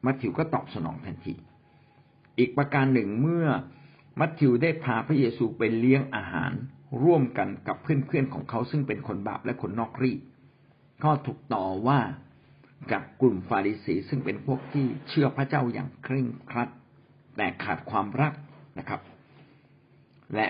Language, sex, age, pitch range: Thai, male, 60-79, 120-145 Hz